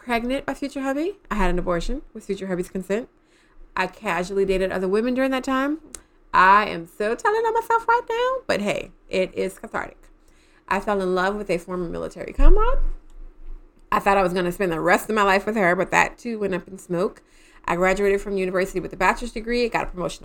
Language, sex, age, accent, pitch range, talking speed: English, female, 30-49, American, 185-275 Hz, 220 wpm